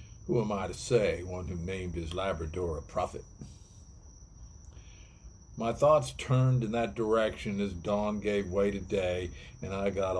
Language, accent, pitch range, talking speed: English, American, 85-105 Hz, 160 wpm